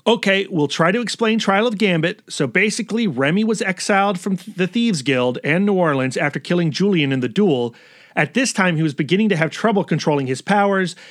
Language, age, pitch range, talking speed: English, 30-49, 145-195 Hz, 205 wpm